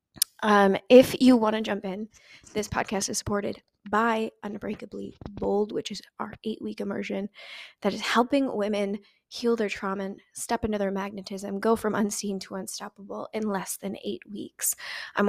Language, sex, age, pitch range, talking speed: English, female, 20-39, 195-220 Hz, 165 wpm